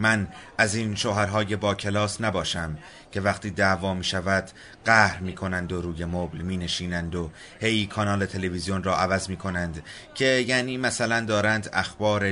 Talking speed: 155 wpm